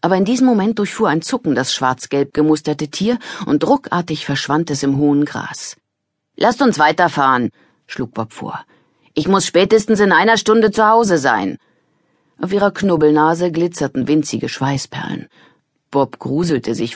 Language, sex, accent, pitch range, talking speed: German, female, German, 140-195 Hz, 150 wpm